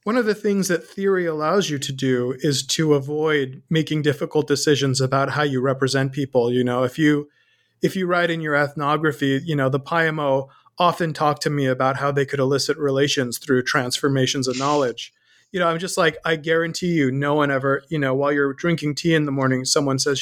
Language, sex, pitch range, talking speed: English, male, 135-165 Hz, 210 wpm